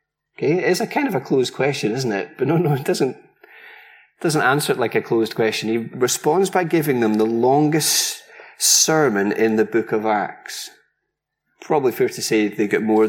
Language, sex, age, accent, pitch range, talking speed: English, male, 30-49, British, 125-190 Hz, 195 wpm